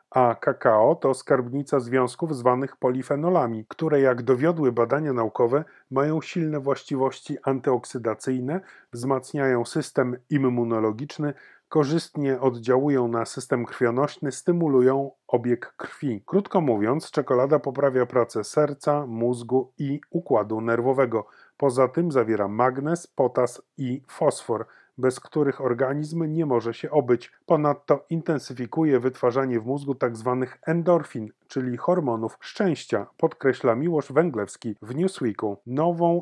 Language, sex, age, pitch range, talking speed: Polish, male, 30-49, 125-150 Hz, 110 wpm